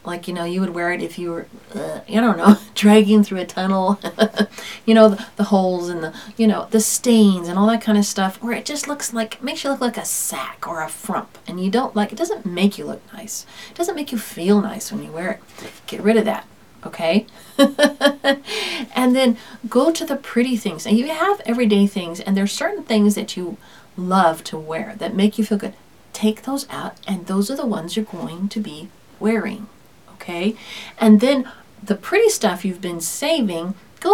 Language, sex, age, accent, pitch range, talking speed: English, female, 40-59, American, 195-245 Hz, 220 wpm